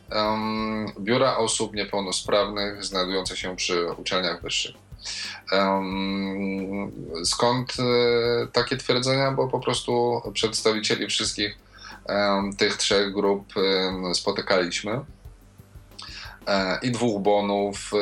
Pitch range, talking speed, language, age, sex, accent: 95-115 Hz, 75 wpm, Polish, 20-39, male, native